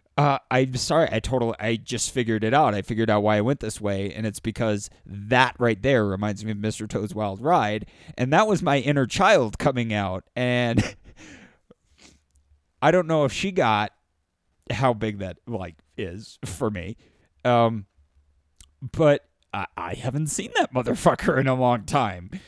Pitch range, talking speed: 110-160 Hz, 170 wpm